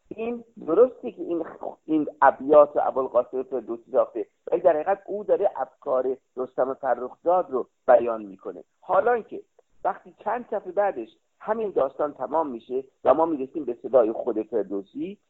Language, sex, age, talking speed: Persian, male, 50-69, 150 wpm